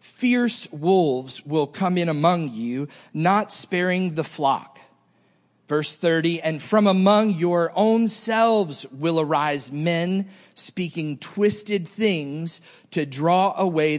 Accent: American